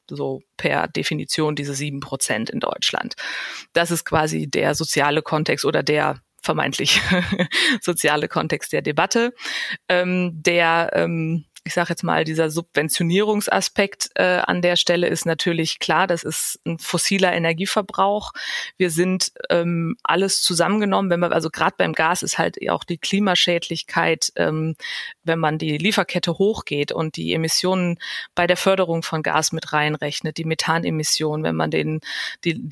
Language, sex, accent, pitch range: German, female, German, 155-180 Hz